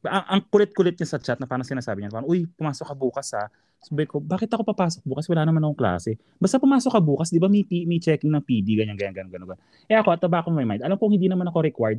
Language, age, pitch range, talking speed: Filipino, 20-39, 110-175 Hz, 270 wpm